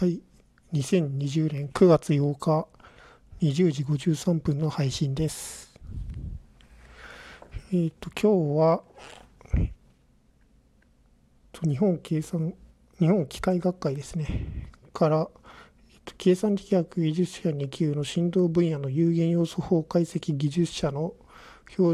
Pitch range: 155-185 Hz